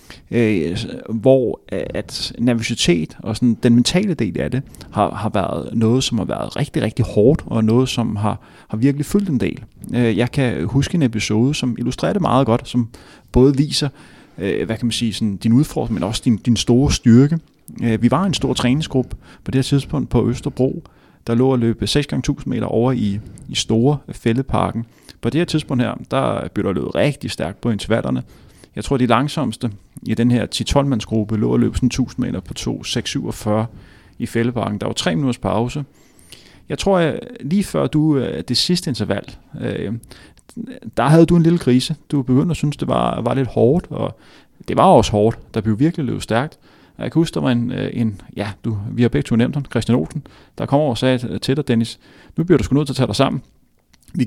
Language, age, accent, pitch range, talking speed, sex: Danish, 30-49, native, 110-140 Hz, 205 wpm, male